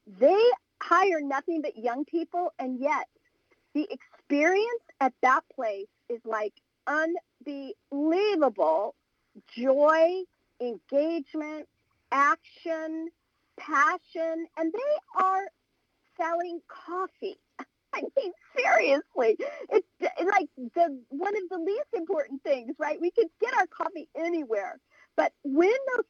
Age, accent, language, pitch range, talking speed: 50-69, American, English, 255-350 Hz, 105 wpm